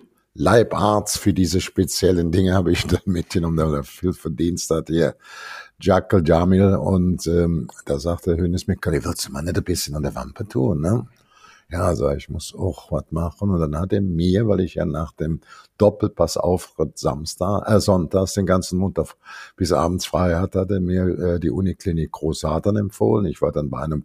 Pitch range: 75-95 Hz